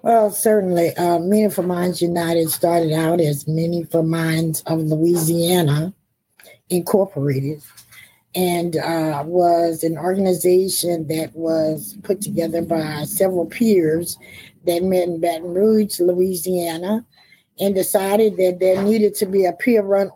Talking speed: 120 wpm